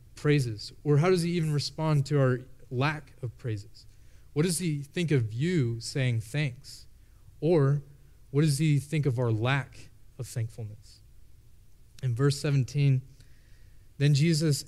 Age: 30-49